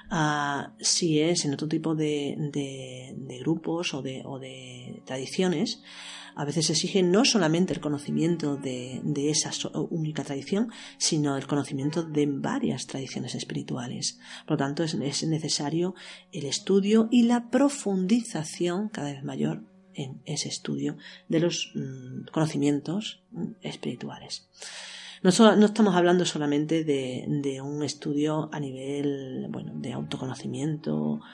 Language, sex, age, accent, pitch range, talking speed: Spanish, female, 40-59, Spanish, 140-185 Hz, 130 wpm